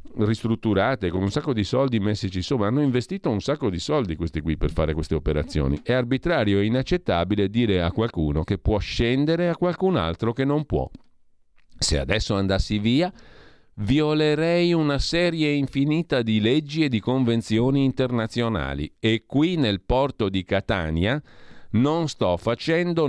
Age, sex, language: 50-69, male, Italian